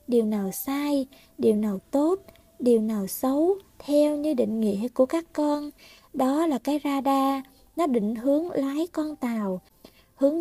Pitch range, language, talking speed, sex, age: 235-300 Hz, Vietnamese, 155 wpm, female, 20-39